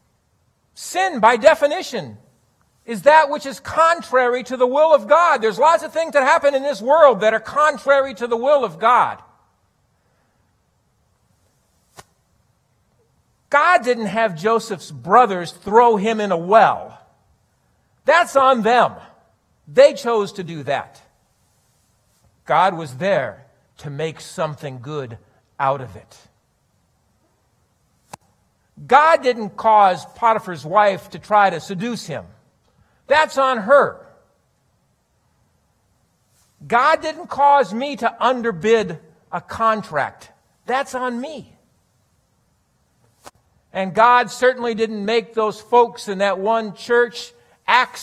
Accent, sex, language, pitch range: American, male, English, 180-255 Hz